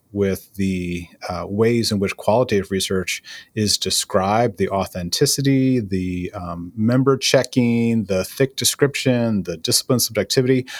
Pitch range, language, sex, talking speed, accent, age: 95-125 Hz, English, male, 120 wpm, American, 30-49